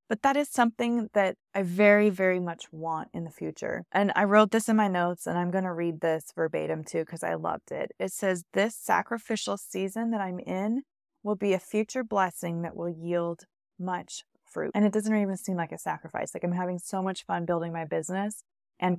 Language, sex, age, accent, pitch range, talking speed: English, female, 20-39, American, 180-225 Hz, 215 wpm